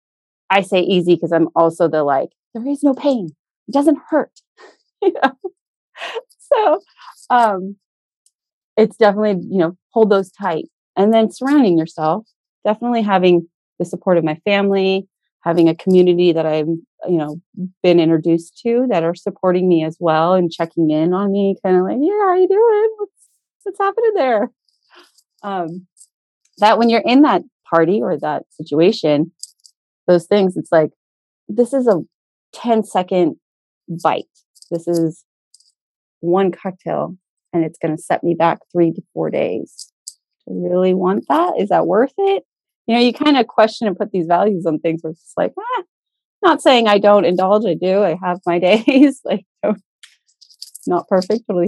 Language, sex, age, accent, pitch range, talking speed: English, female, 30-49, American, 170-235 Hz, 170 wpm